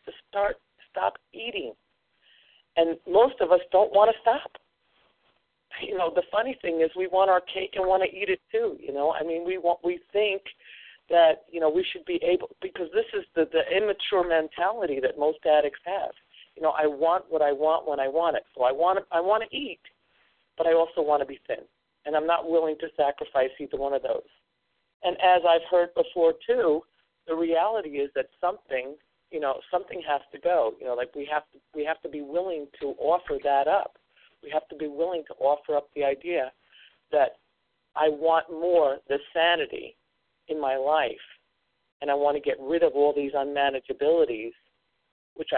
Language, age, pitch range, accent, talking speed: English, 50-69, 140-190 Hz, American, 200 wpm